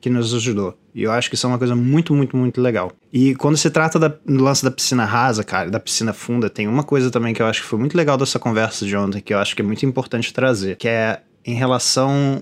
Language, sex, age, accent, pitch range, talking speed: Portuguese, male, 20-39, Brazilian, 120-150 Hz, 265 wpm